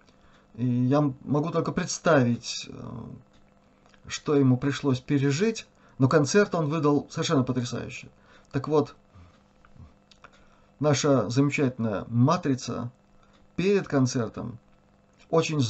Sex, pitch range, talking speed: male, 120-145 Hz, 90 wpm